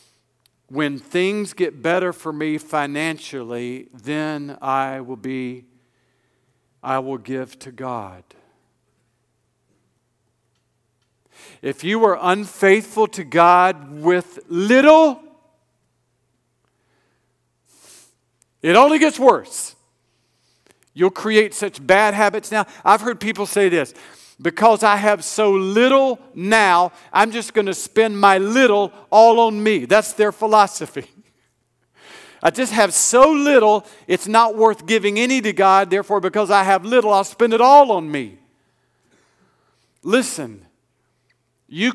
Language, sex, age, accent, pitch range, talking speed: English, male, 50-69, American, 155-220 Hz, 120 wpm